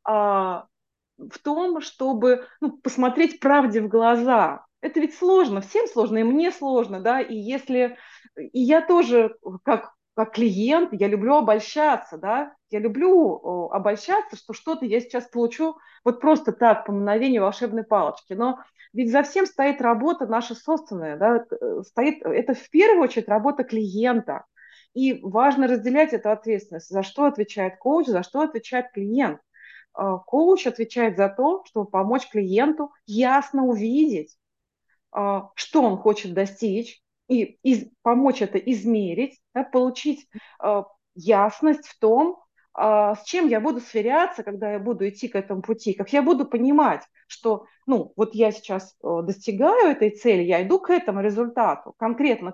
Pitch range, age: 215-285 Hz, 30-49